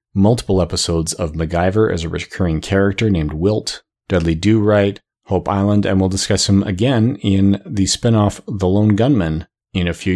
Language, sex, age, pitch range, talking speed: English, male, 30-49, 90-110 Hz, 165 wpm